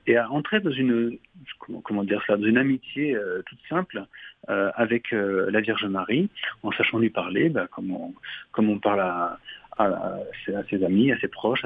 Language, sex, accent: French, male, French